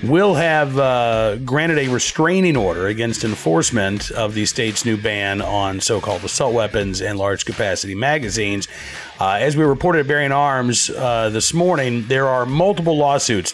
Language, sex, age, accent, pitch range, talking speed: English, male, 40-59, American, 105-135 Hz, 155 wpm